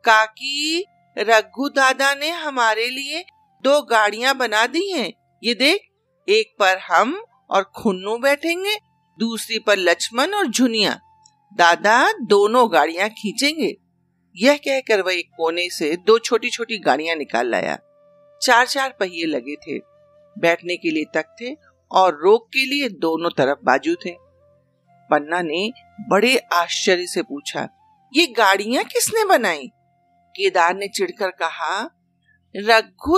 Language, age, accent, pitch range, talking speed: Hindi, 50-69, native, 185-295 Hz, 130 wpm